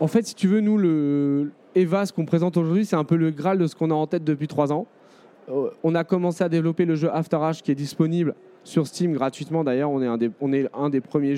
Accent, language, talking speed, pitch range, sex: French, French, 265 wpm, 140-170 Hz, male